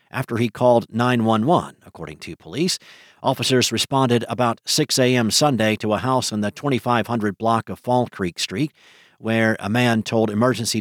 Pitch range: 100-125 Hz